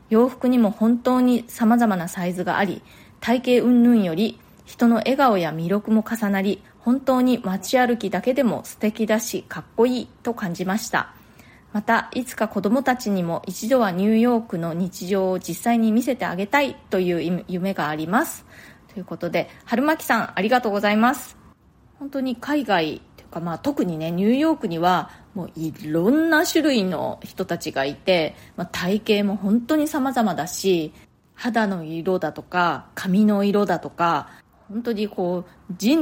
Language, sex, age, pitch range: Japanese, female, 20-39, 175-245 Hz